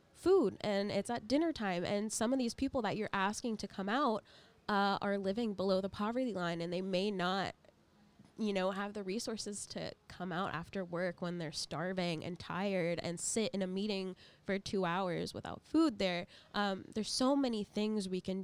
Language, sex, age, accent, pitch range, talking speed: English, female, 10-29, American, 180-220 Hz, 200 wpm